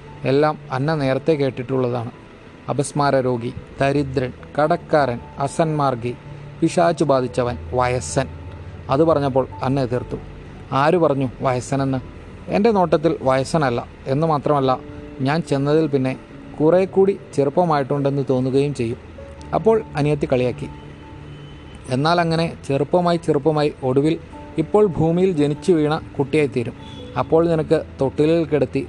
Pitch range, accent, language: 130-160 Hz, native, Malayalam